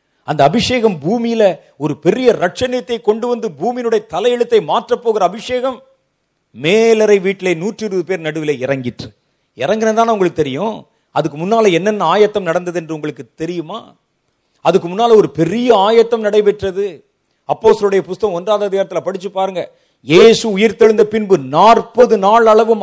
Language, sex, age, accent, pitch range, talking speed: Tamil, male, 40-59, native, 185-235 Hz, 105 wpm